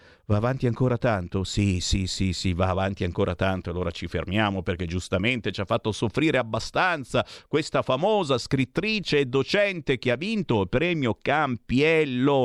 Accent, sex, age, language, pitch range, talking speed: native, male, 50-69, Italian, 100-140 Hz, 160 wpm